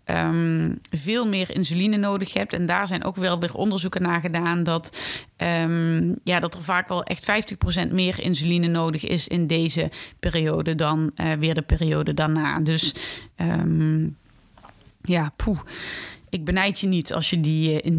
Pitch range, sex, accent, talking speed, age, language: 160-185 Hz, female, Dutch, 155 wpm, 20-39, Dutch